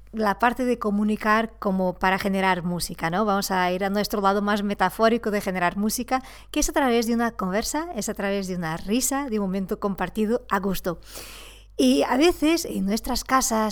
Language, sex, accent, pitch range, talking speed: Spanish, female, Spanish, 200-255 Hz, 195 wpm